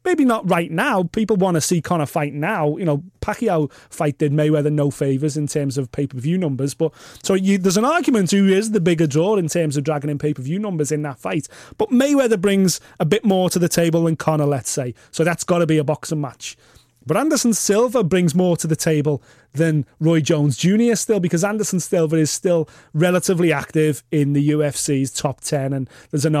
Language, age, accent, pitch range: English, 30-49, British, 140-175 Hz